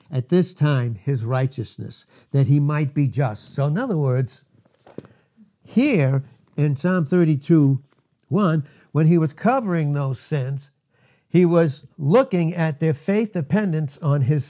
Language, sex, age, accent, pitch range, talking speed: English, male, 60-79, American, 130-165 Hz, 140 wpm